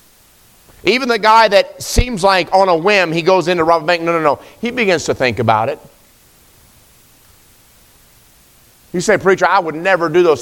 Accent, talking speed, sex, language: American, 180 wpm, male, English